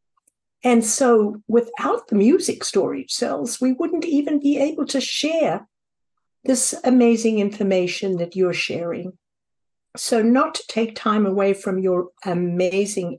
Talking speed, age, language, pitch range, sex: 130 wpm, 60-79, English, 200-255 Hz, female